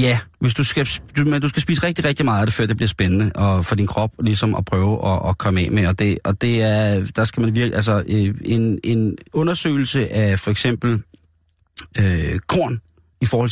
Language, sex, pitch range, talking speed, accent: Danish, male, 100-130 Hz, 220 wpm, native